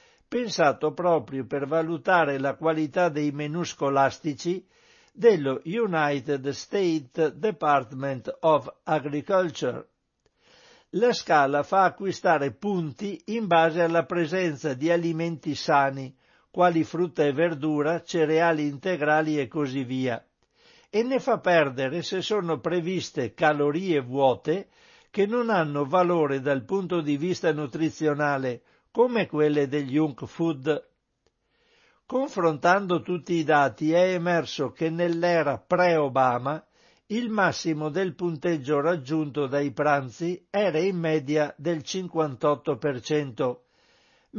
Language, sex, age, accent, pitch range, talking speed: Italian, male, 60-79, native, 145-180 Hz, 110 wpm